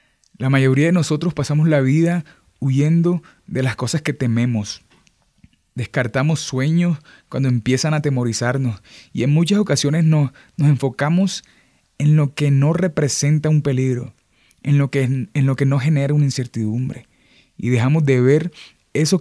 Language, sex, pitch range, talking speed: Spanish, male, 120-150 Hz, 140 wpm